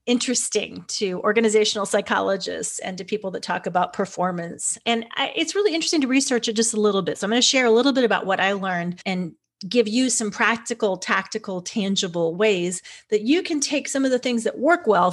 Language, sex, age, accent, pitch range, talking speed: English, female, 30-49, American, 180-230 Hz, 215 wpm